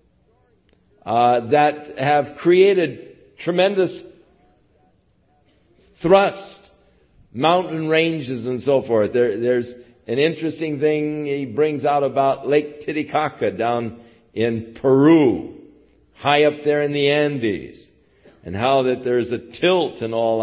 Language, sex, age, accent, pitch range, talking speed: English, male, 60-79, American, 100-145 Hz, 115 wpm